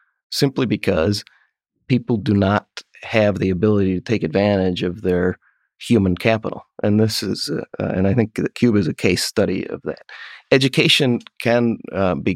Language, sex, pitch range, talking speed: English, male, 95-115 Hz, 165 wpm